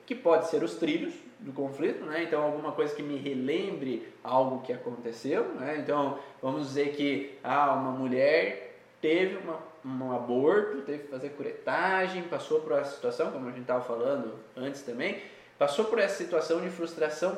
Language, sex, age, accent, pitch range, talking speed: Portuguese, male, 20-39, Brazilian, 145-185 Hz, 175 wpm